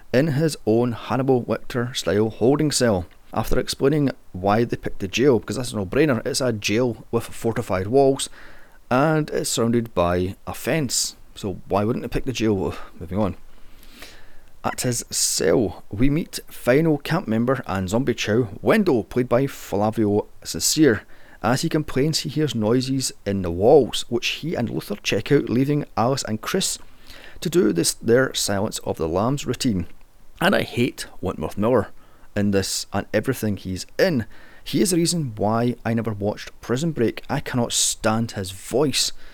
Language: English